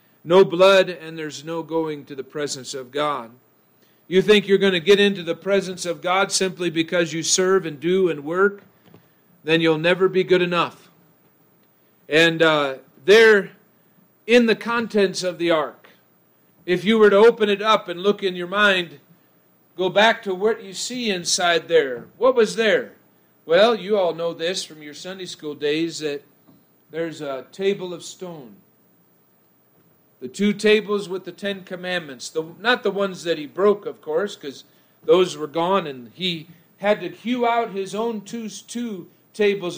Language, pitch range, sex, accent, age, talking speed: English, 165-205 Hz, male, American, 50-69, 170 wpm